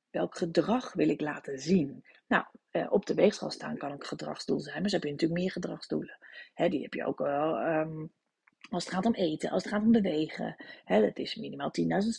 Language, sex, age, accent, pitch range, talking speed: Dutch, female, 30-49, Dutch, 180-250 Hz, 220 wpm